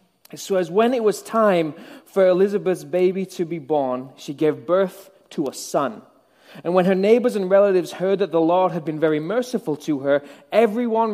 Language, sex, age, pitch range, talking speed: English, male, 20-39, 160-200 Hz, 190 wpm